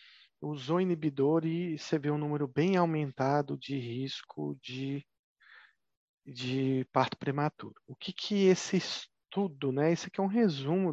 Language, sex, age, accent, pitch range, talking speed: Portuguese, male, 40-59, Brazilian, 140-175 Hz, 145 wpm